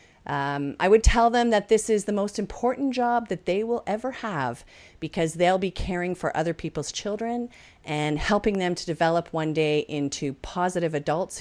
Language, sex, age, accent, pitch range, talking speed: English, female, 40-59, American, 155-210 Hz, 185 wpm